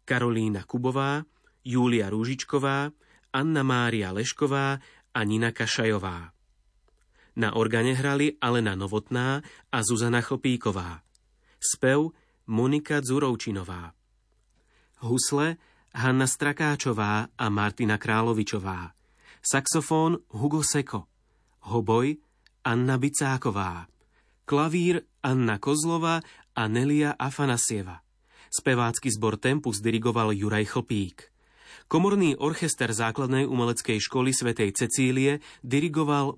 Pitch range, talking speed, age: 110-140 Hz, 85 wpm, 30-49